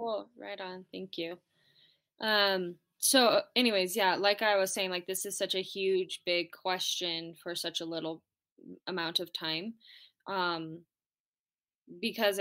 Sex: female